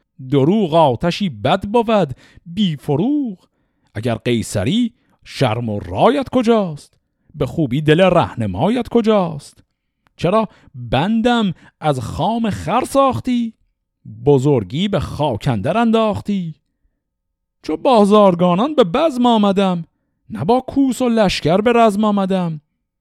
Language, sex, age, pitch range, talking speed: Persian, male, 50-69, 130-205 Hz, 100 wpm